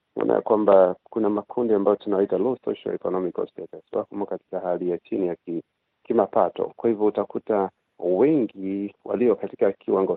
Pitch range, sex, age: 95-110 Hz, male, 50-69